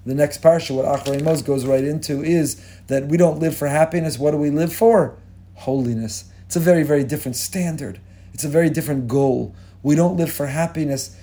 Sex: male